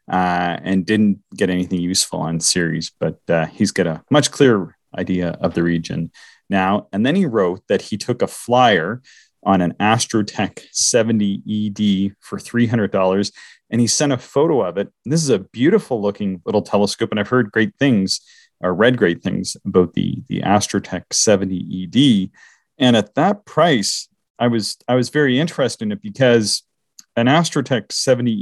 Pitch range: 90-115 Hz